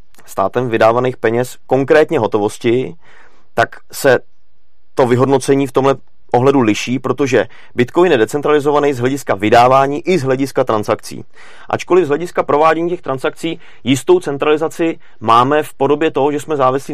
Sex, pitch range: male, 115-140 Hz